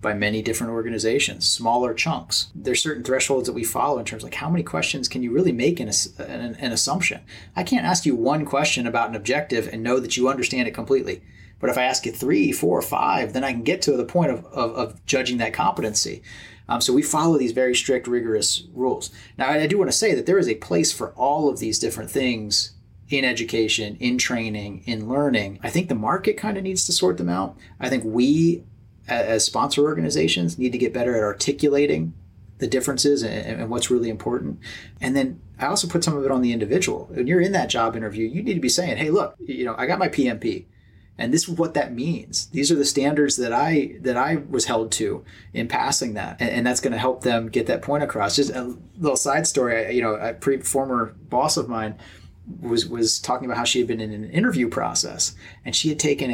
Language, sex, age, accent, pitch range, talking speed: English, male, 30-49, American, 110-140 Hz, 230 wpm